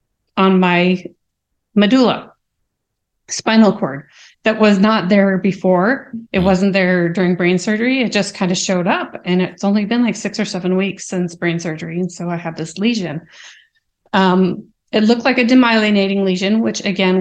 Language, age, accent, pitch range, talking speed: English, 30-49, American, 180-215 Hz, 170 wpm